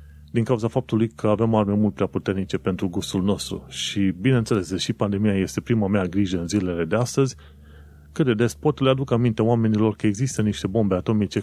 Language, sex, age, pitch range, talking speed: Romanian, male, 30-49, 90-110 Hz, 195 wpm